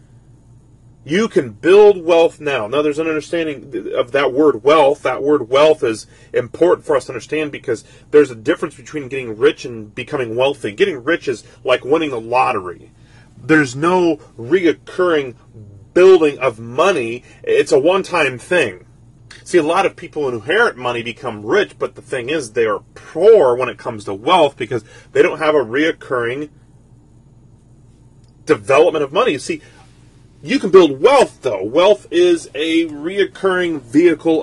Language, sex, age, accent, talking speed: English, male, 30-49, American, 160 wpm